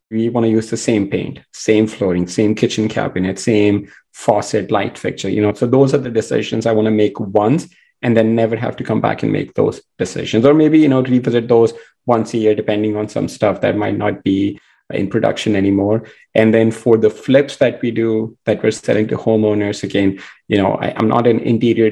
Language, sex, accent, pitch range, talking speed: English, male, Indian, 105-115 Hz, 220 wpm